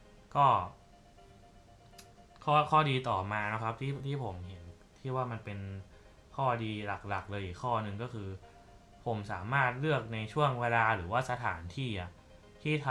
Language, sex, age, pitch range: Thai, male, 20-39, 100-120 Hz